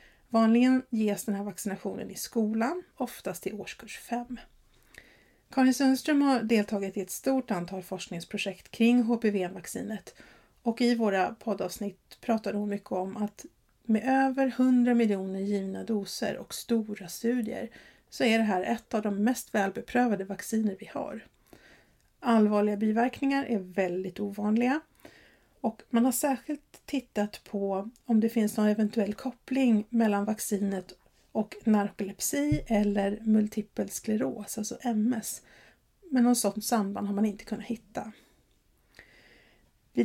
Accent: Swedish